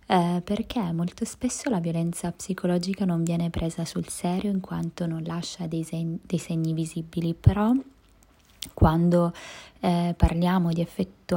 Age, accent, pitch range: 20-39, native, 170-190 Hz